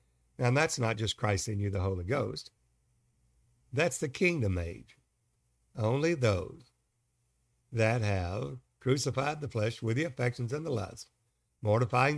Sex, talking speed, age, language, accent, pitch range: male, 140 wpm, 60-79, English, American, 110-135 Hz